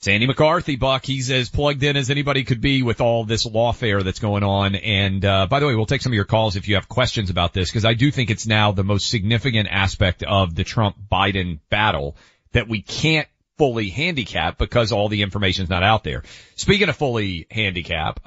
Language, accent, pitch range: English, American, 100-140 Hz